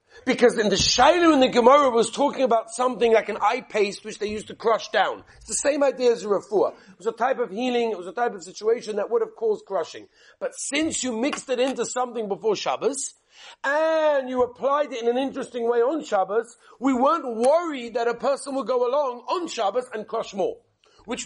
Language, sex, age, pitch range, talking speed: English, male, 50-69, 210-275 Hz, 220 wpm